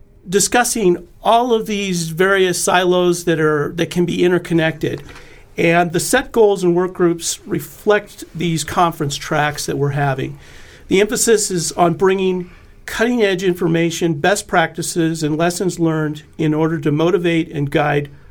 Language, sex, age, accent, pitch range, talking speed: English, male, 50-69, American, 155-180 Hz, 145 wpm